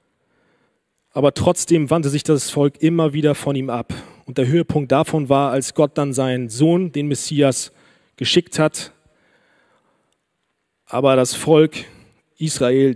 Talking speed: 135 wpm